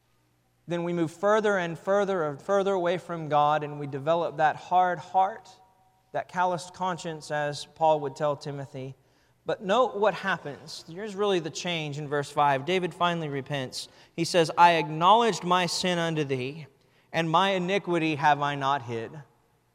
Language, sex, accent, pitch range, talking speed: English, male, American, 155-205 Hz, 165 wpm